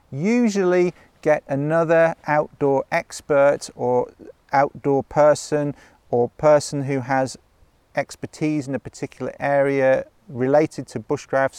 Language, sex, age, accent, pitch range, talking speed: English, male, 40-59, British, 125-150 Hz, 105 wpm